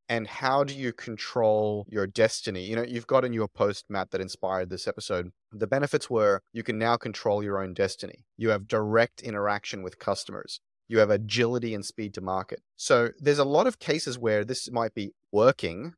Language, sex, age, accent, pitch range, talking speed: English, male, 30-49, Australian, 100-120 Hz, 200 wpm